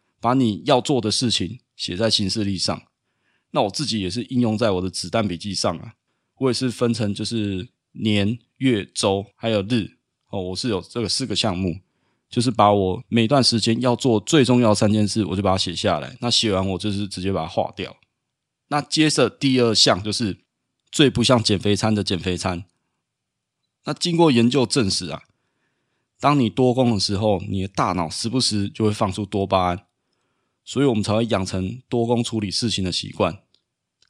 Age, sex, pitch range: 20-39, male, 100-125 Hz